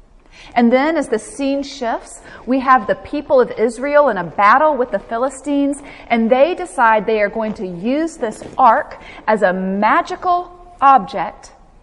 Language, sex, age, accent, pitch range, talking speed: English, female, 30-49, American, 225-290 Hz, 160 wpm